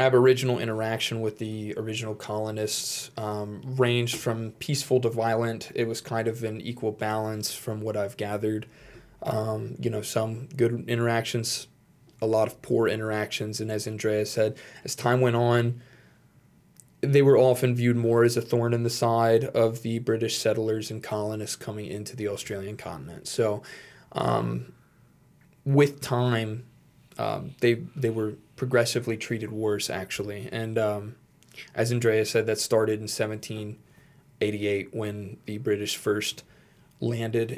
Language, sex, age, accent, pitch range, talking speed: English, male, 20-39, American, 110-125 Hz, 145 wpm